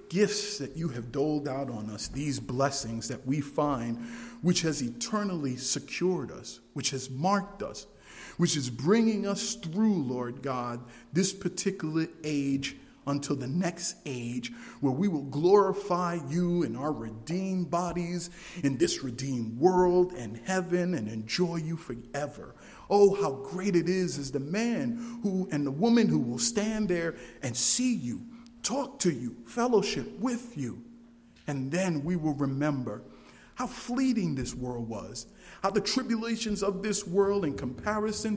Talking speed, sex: 155 wpm, male